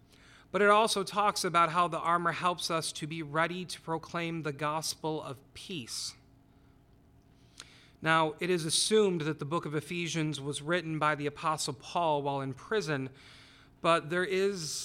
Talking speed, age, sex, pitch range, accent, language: 160 wpm, 30-49, male, 140-170 Hz, American, English